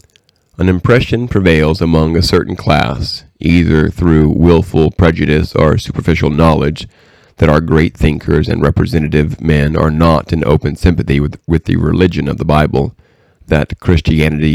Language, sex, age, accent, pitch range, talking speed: English, male, 40-59, American, 75-85 Hz, 145 wpm